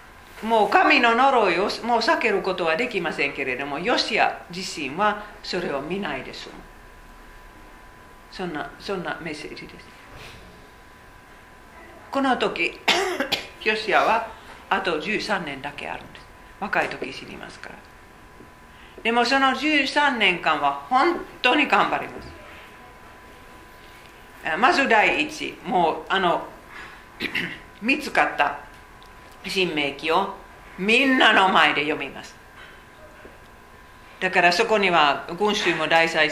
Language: Japanese